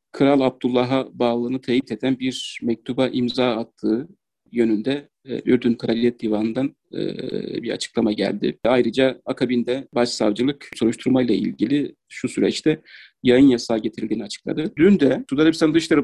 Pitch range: 125-160 Hz